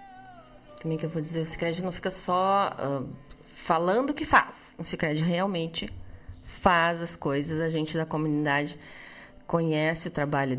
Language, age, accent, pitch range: Portuguese, 30-49, Brazilian, 145-180 Hz